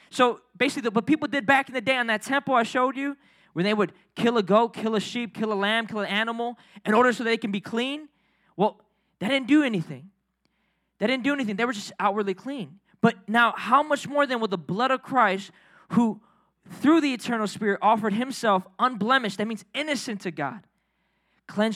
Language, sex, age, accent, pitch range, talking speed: English, male, 20-39, American, 195-270 Hz, 210 wpm